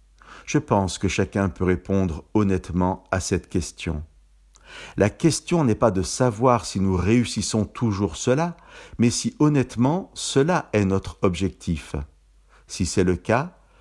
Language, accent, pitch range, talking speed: French, French, 85-110 Hz, 140 wpm